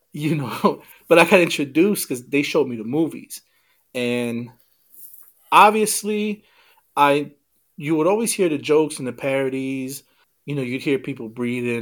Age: 30-49